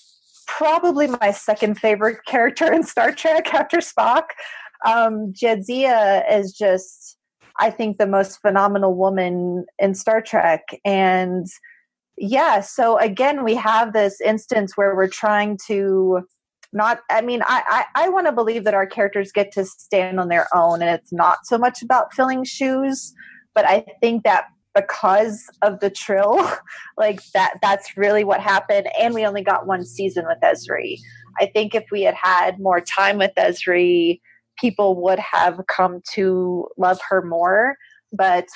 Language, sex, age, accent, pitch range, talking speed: English, female, 30-49, American, 190-230 Hz, 160 wpm